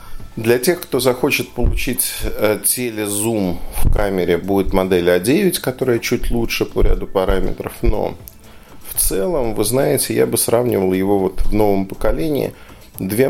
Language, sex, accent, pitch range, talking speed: Russian, male, native, 100-120 Hz, 140 wpm